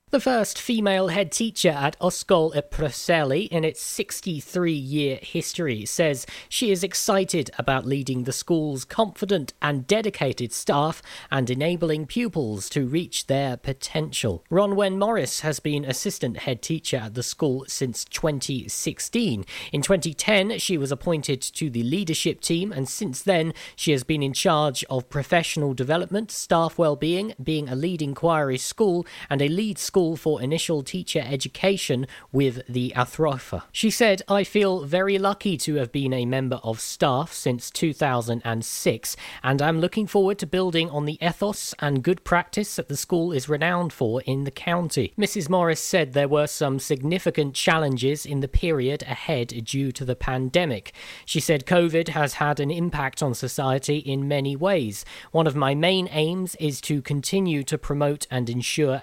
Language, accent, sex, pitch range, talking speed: English, British, male, 135-175 Hz, 165 wpm